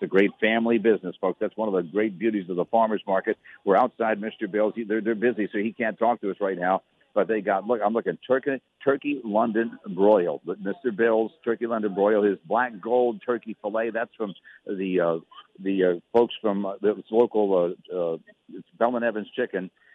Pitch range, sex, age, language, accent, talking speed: 95-115 Hz, male, 60-79, English, American, 205 wpm